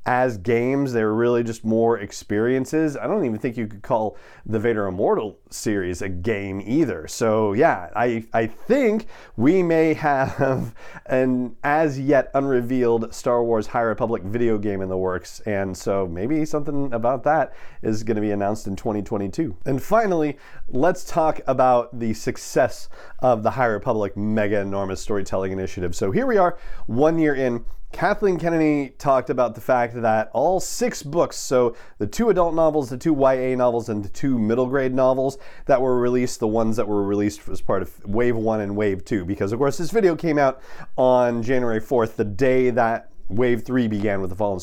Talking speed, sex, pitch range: 185 wpm, male, 110-150 Hz